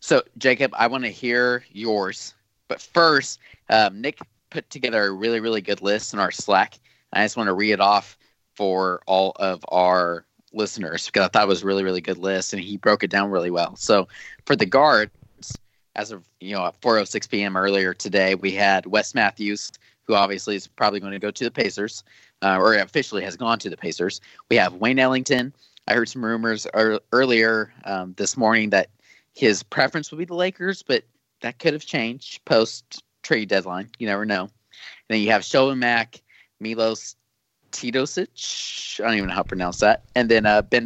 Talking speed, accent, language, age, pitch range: 200 wpm, American, English, 20-39, 100-115 Hz